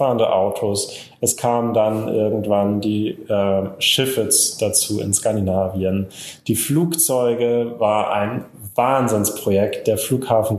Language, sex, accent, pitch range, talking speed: German, male, German, 100-120 Hz, 100 wpm